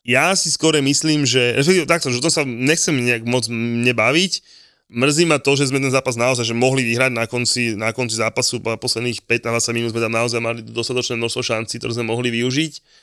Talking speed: 205 wpm